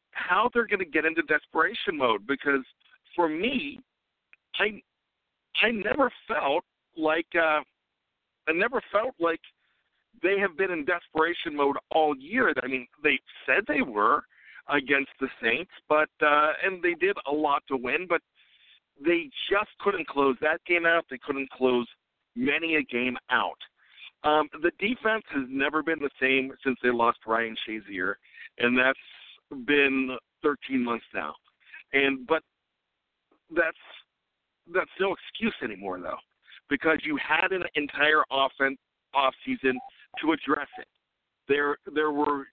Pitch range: 135-175 Hz